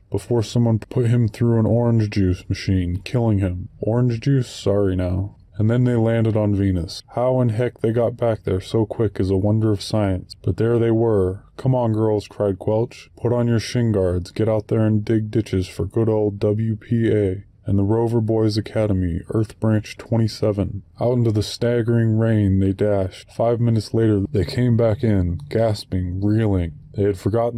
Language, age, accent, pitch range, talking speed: English, 20-39, American, 100-120 Hz, 190 wpm